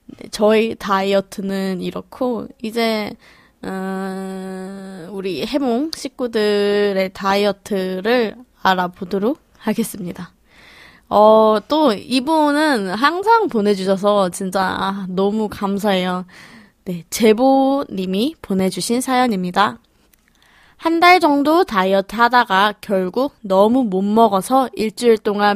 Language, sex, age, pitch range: Korean, female, 20-39, 195-255 Hz